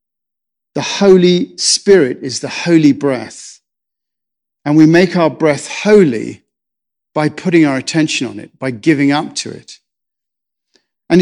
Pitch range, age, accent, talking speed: 135-175 Hz, 50-69, British, 135 wpm